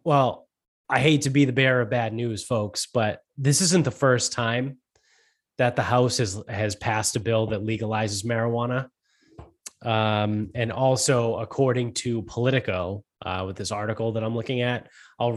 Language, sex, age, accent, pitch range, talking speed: English, male, 20-39, American, 110-145 Hz, 170 wpm